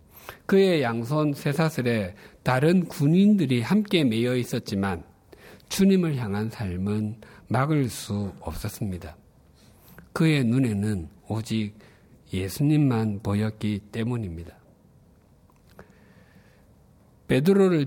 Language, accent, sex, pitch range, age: Korean, native, male, 100-140 Hz, 50-69